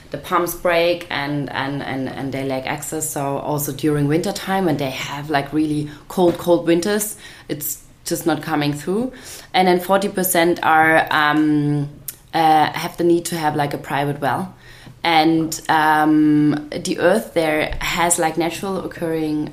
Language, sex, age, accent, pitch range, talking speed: English, female, 20-39, German, 145-170 Hz, 165 wpm